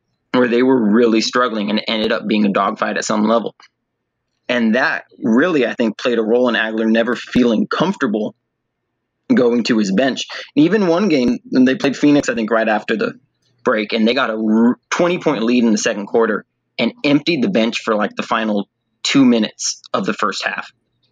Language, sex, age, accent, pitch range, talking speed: English, male, 30-49, American, 110-140 Hz, 200 wpm